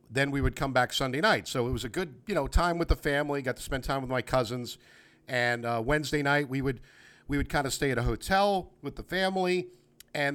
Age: 50-69